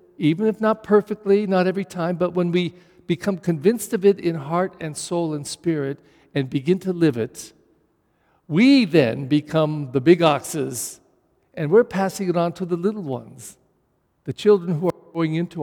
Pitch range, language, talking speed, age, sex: 135-180 Hz, English, 175 wpm, 50-69, male